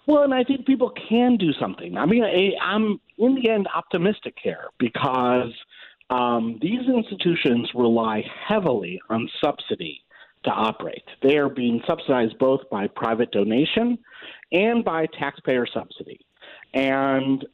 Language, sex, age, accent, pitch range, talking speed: English, male, 50-69, American, 120-175 Hz, 135 wpm